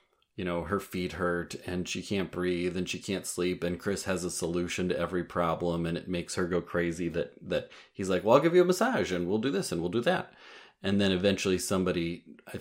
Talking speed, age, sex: 240 wpm, 30-49, male